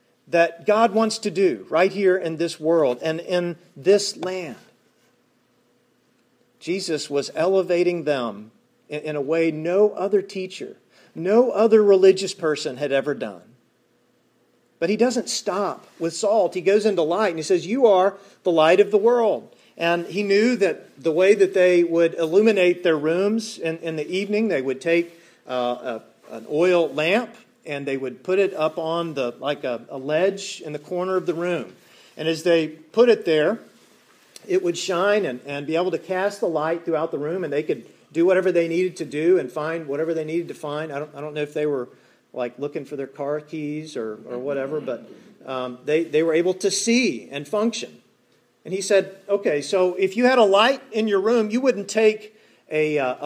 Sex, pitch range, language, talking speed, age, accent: male, 155-200 Hz, English, 195 wpm, 40-59, American